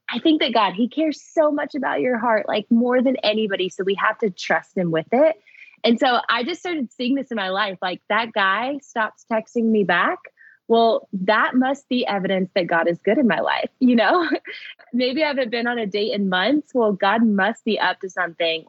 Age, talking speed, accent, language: 20-39, 225 wpm, American, English